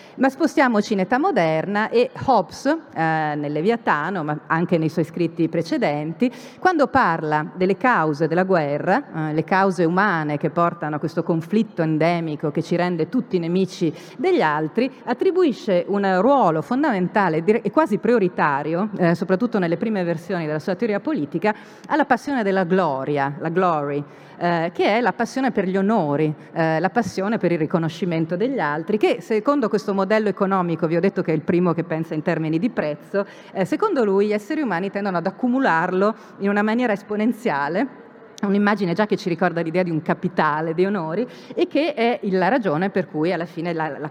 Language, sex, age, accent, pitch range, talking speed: Italian, female, 40-59, native, 160-210 Hz, 175 wpm